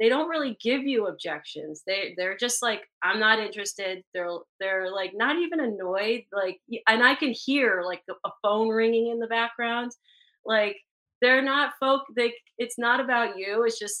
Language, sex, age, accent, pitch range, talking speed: English, female, 30-49, American, 200-245 Hz, 185 wpm